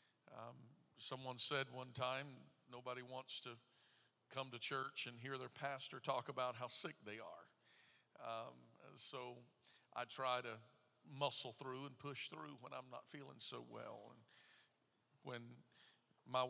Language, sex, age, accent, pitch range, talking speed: English, male, 50-69, American, 120-140 Hz, 145 wpm